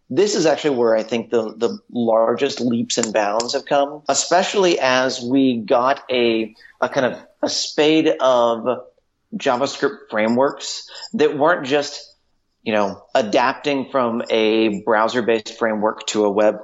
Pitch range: 115-145 Hz